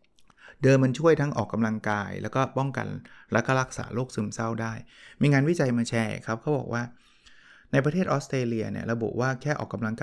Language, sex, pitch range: Thai, male, 110-130 Hz